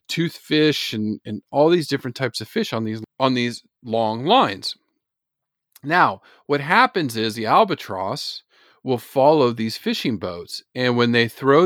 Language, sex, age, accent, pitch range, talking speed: English, male, 40-59, American, 110-150 Hz, 155 wpm